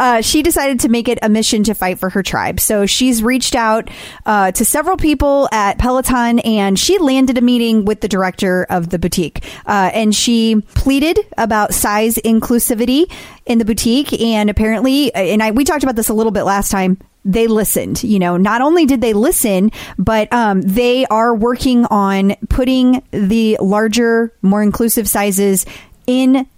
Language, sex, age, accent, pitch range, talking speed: English, female, 30-49, American, 205-245 Hz, 175 wpm